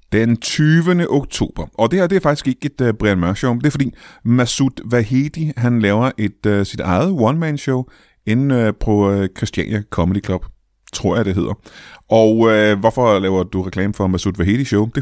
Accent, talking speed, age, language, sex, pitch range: native, 200 wpm, 30-49, Danish, male, 95-130 Hz